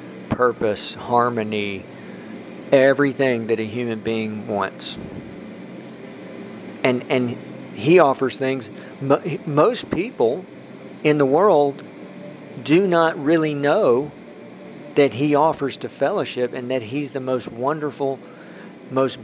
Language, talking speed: English, 105 wpm